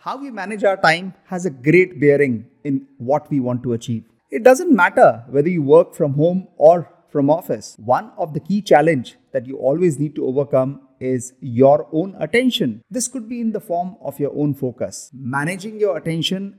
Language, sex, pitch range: English, male, 145-215 Hz